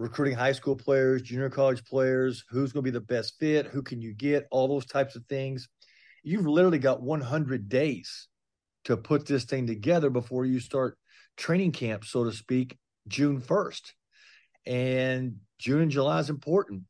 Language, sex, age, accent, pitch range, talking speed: English, male, 50-69, American, 120-145 Hz, 175 wpm